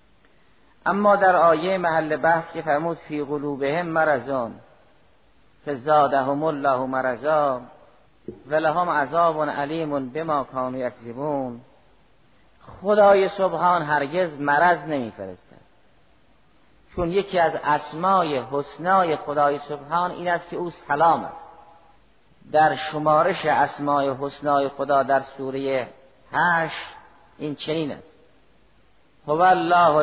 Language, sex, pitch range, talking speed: Persian, male, 140-165 Hz, 110 wpm